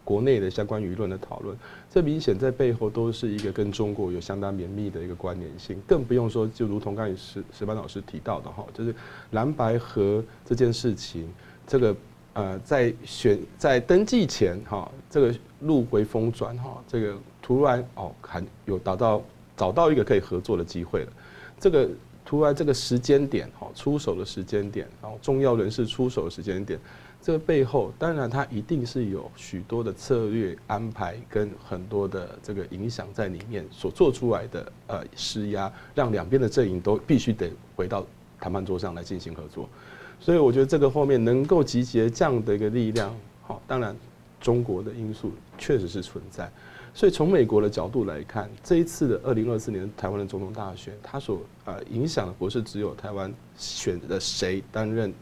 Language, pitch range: Chinese, 95-120 Hz